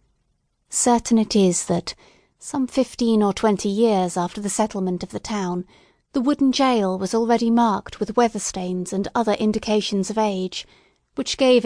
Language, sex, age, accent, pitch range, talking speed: English, female, 30-49, British, 190-235 Hz, 155 wpm